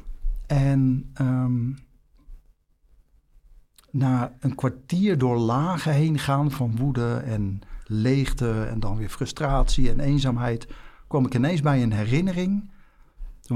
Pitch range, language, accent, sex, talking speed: 115-150 Hz, Dutch, Dutch, male, 115 wpm